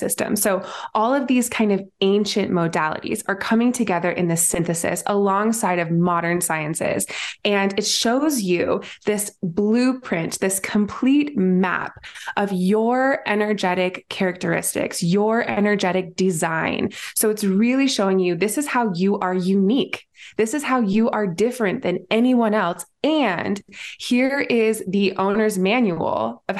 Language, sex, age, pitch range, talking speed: English, female, 20-39, 185-220 Hz, 140 wpm